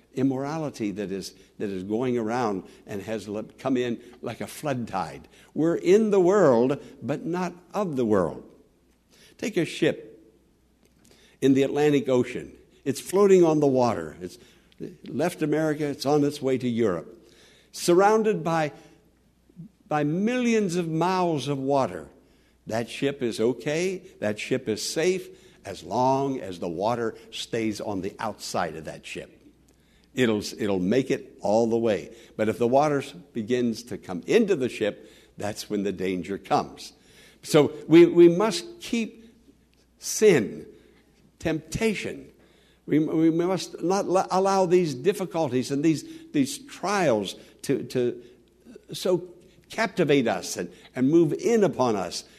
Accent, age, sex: American, 60-79, male